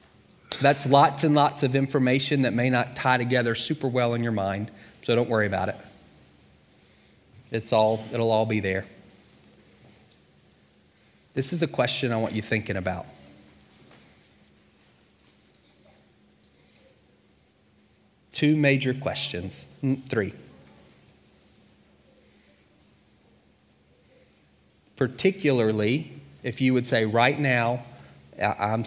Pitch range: 100-125 Hz